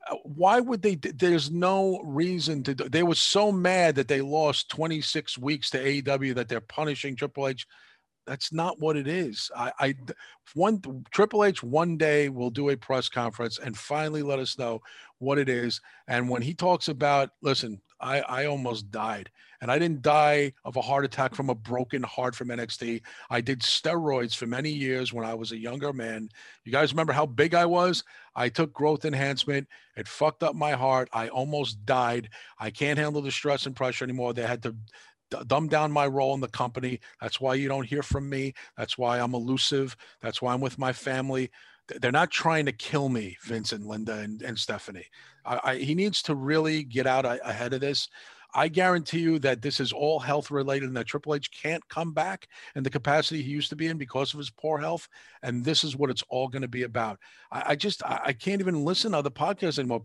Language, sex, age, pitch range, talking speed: English, male, 40-59, 125-155 Hz, 210 wpm